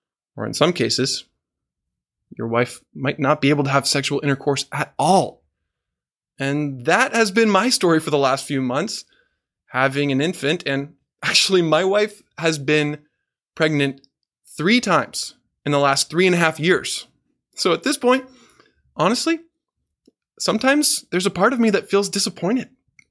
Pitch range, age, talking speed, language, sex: 140-210 Hz, 20-39, 160 wpm, English, male